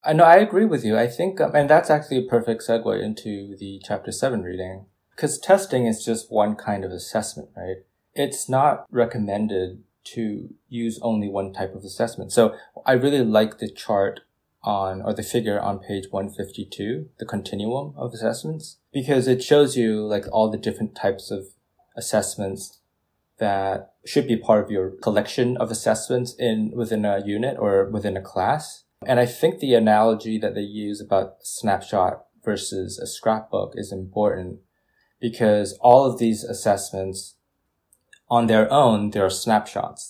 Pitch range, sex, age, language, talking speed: 95-120 Hz, male, 20-39, English, 160 wpm